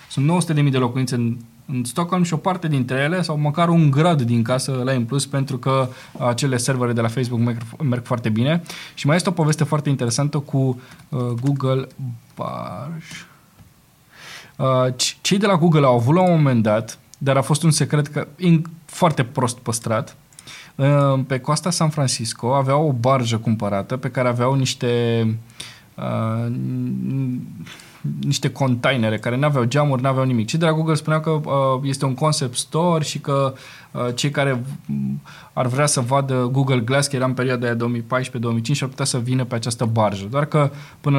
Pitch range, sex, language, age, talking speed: 120-145 Hz, male, Romanian, 20-39, 180 wpm